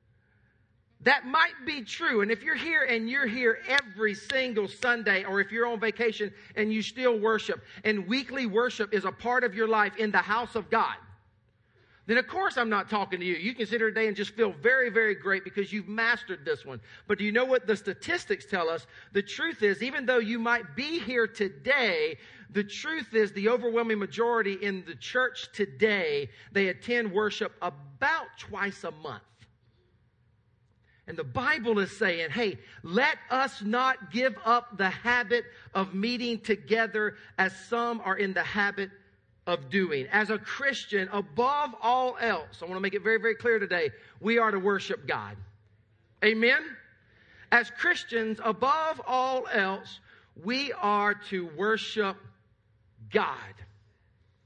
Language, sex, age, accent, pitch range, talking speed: English, male, 40-59, American, 185-240 Hz, 165 wpm